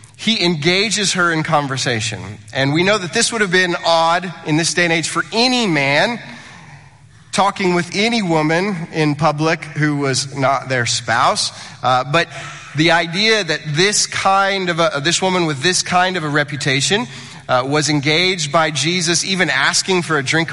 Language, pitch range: English, 130-170 Hz